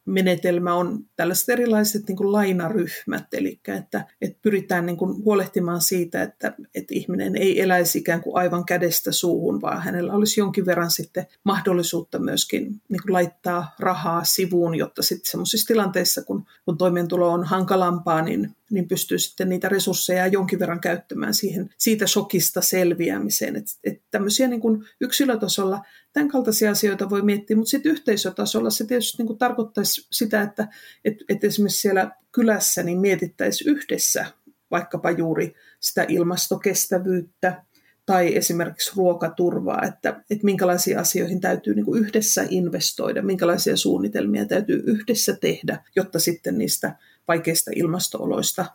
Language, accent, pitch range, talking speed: Finnish, native, 175-215 Hz, 120 wpm